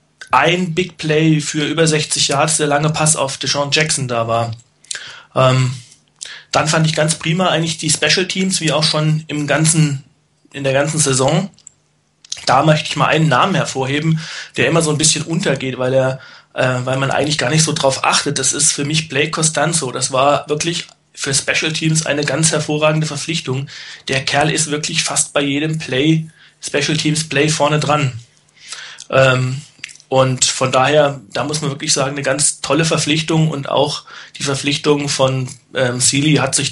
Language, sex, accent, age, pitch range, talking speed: German, male, German, 30-49, 135-160 Hz, 180 wpm